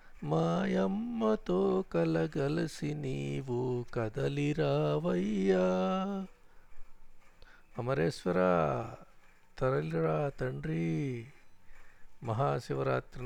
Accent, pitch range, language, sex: native, 100-125 Hz, Telugu, male